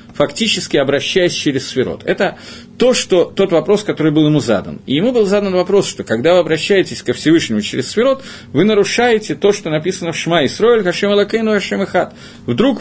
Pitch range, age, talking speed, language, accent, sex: 140-200 Hz, 40-59, 180 wpm, Russian, native, male